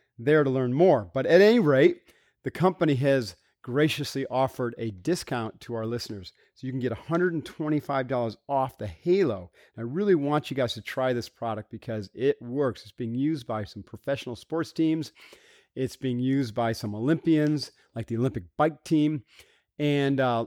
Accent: American